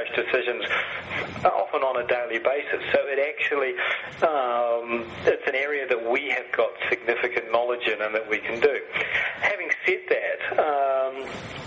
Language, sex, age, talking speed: English, male, 40-59, 150 wpm